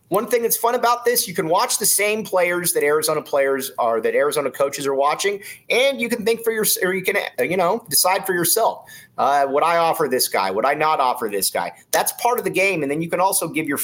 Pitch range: 150-230 Hz